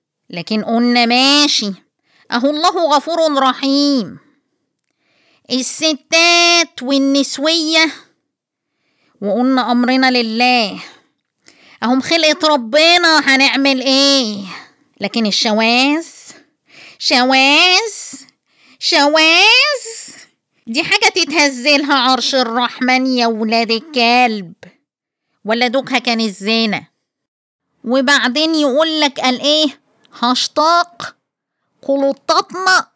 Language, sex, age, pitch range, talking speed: Arabic, female, 20-39, 250-320 Hz, 75 wpm